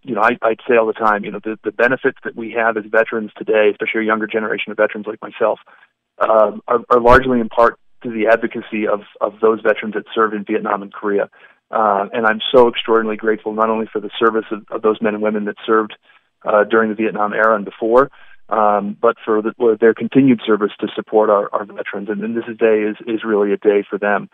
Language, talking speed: English, 235 wpm